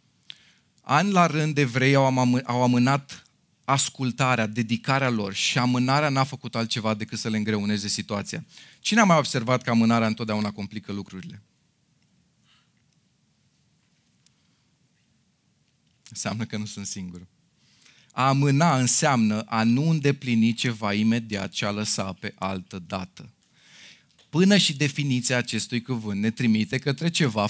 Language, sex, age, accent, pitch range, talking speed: Romanian, male, 30-49, native, 115-165 Hz, 130 wpm